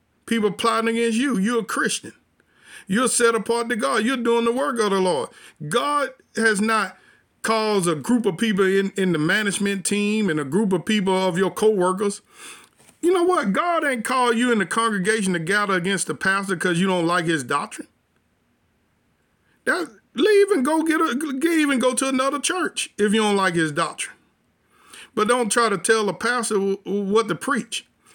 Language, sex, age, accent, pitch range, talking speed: English, male, 50-69, American, 195-235 Hz, 190 wpm